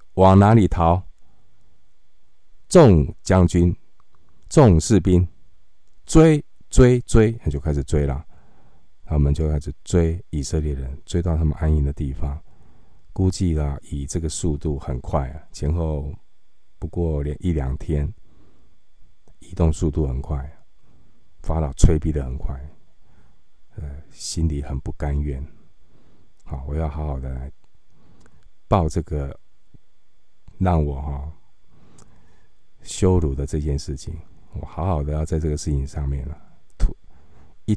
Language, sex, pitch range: Chinese, male, 75-90 Hz